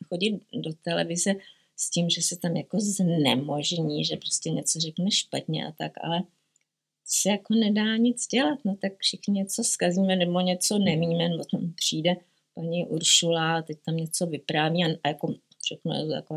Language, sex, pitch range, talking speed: Czech, female, 165-205 Hz, 170 wpm